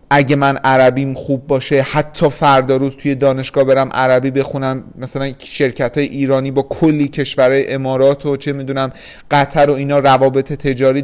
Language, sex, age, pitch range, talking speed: Persian, male, 30-49, 130-160 Hz, 150 wpm